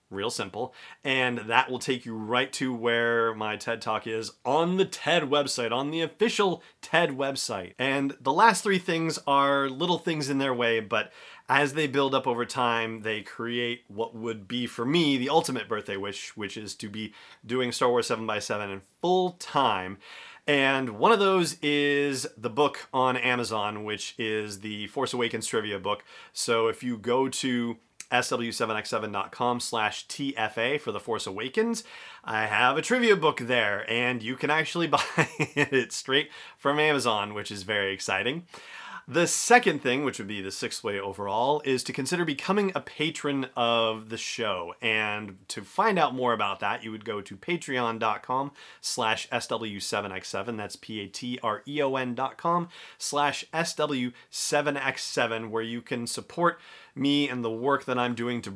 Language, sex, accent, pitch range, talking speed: English, male, American, 115-145 Hz, 165 wpm